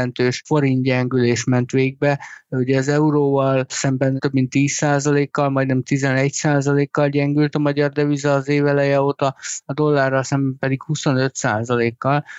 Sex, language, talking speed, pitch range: male, Hungarian, 115 wpm, 130-145 Hz